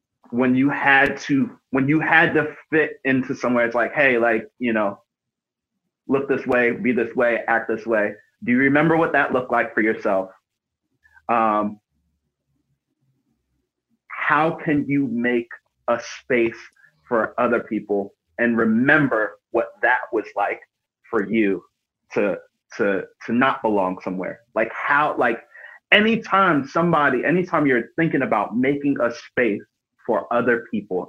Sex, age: male, 30-49